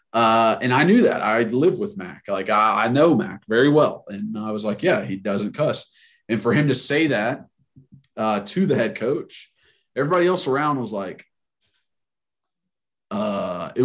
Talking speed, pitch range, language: 180 wpm, 110-140 Hz, English